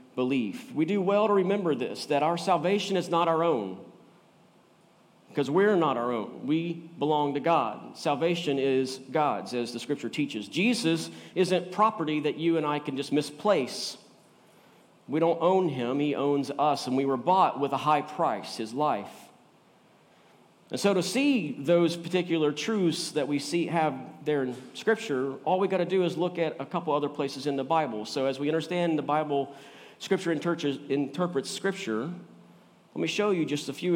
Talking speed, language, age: 180 wpm, English, 40-59